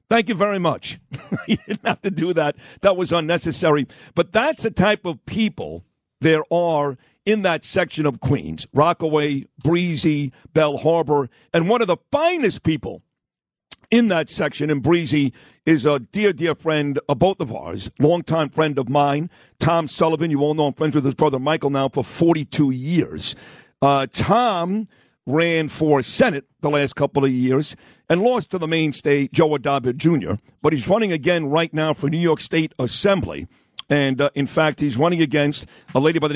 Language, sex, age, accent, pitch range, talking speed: English, male, 50-69, American, 145-175 Hz, 180 wpm